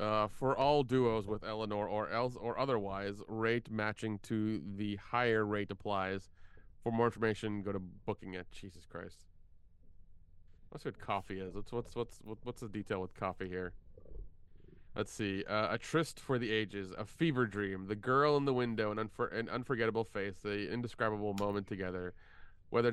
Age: 30-49